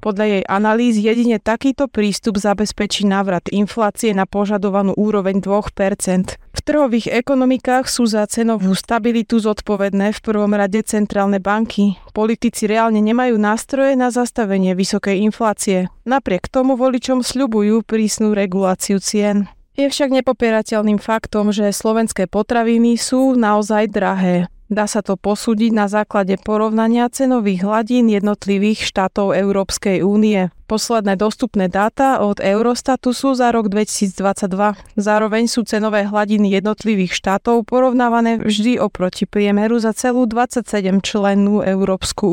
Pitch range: 200-235 Hz